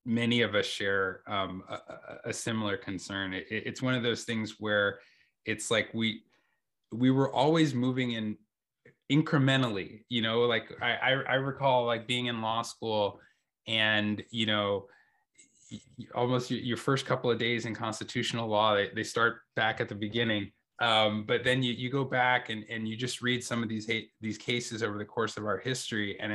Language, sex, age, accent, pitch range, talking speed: English, male, 20-39, American, 110-125 Hz, 180 wpm